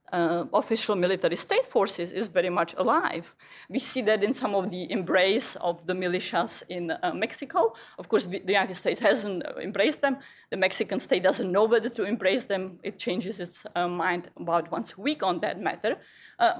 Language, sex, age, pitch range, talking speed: English, female, 30-49, 180-235 Hz, 190 wpm